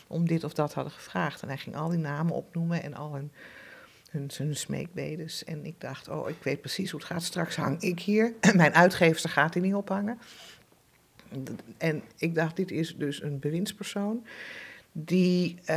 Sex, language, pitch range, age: female, Dutch, 155-180 Hz, 50-69